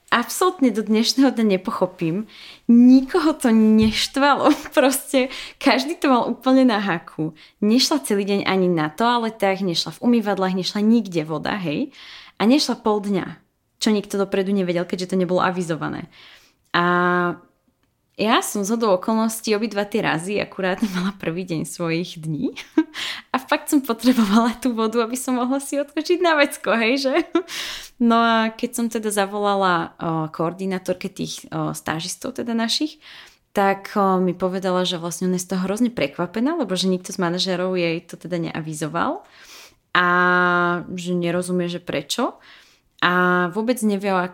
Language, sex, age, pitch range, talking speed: Slovak, female, 20-39, 180-230 Hz, 145 wpm